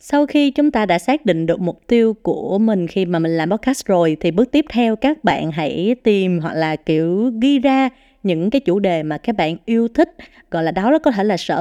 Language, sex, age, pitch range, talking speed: Vietnamese, female, 20-39, 175-255 Hz, 245 wpm